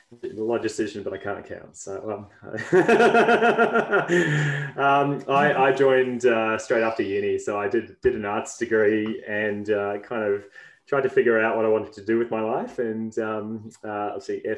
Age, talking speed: 20-39, 180 wpm